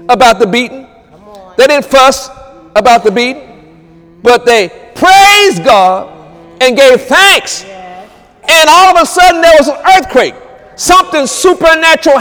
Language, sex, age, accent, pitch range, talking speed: English, male, 50-69, American, 230-270 Hz, 135 wpm